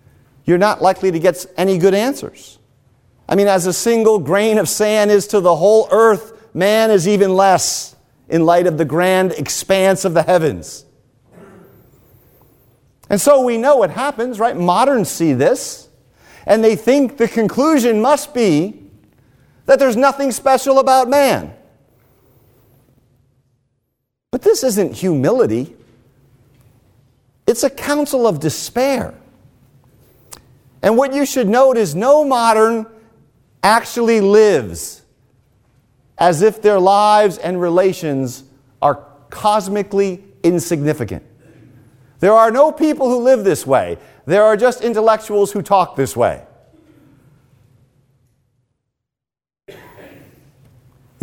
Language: English